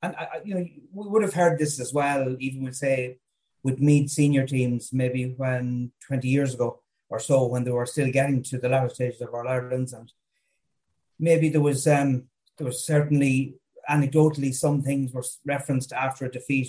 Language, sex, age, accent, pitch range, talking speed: English, male, 30-49, Irish, 130-155 Hz, 190 wpm